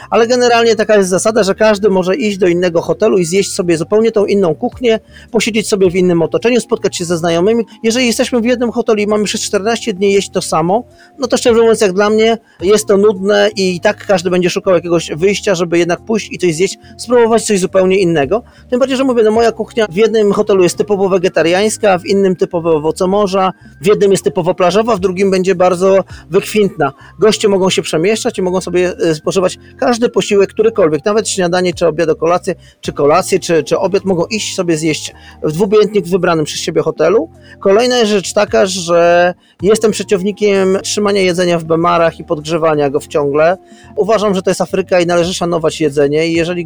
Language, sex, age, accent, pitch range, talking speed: Polish, male, 40-59, native, 175-215 Hz, 195 wpm